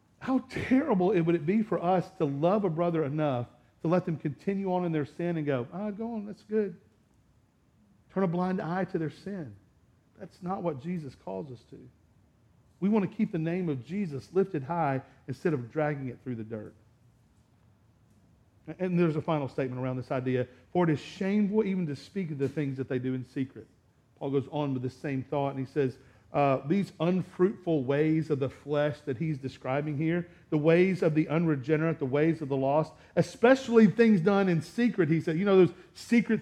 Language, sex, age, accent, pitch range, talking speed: English, male, 50-69, American, 145-195 Hz, 205 wpm